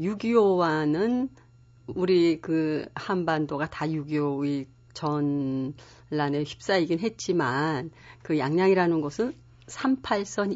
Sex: female